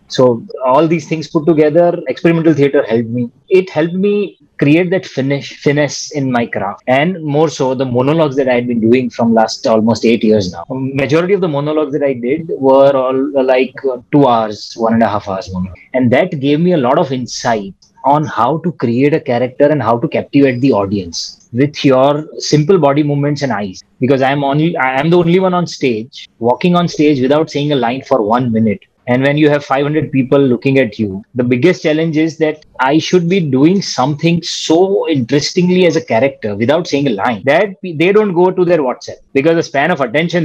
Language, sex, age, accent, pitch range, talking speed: English, male, 20-39, Indian, 125-160 Hz, 205 wpm